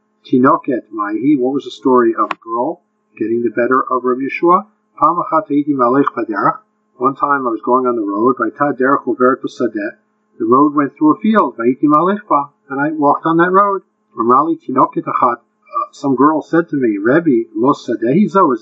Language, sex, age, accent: English, male, 50-69, American